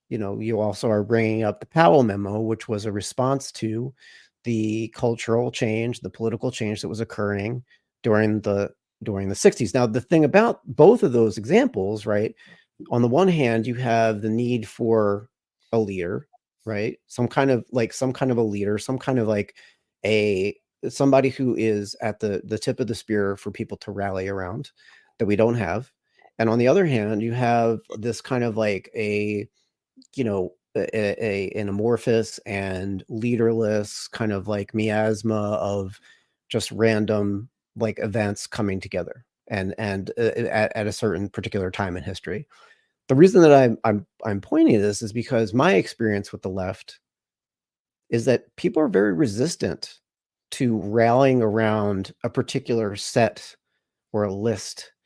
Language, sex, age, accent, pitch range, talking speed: English, male, 30-49, American, 105-120 Hz, 170 wpm